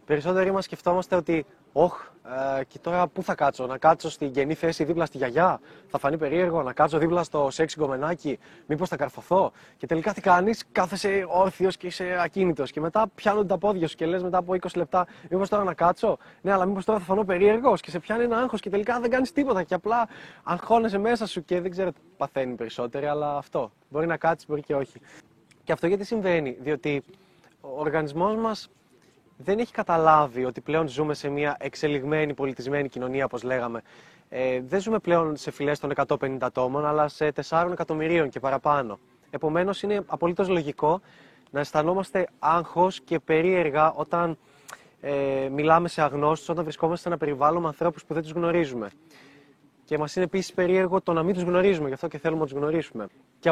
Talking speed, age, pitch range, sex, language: 190 wpm, 20-39, 145-185 Hz, male, Greek